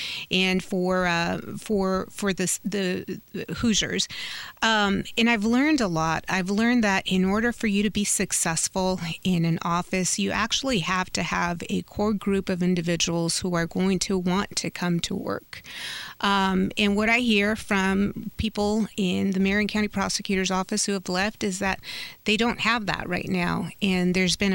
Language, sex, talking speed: English, female, 180 wpm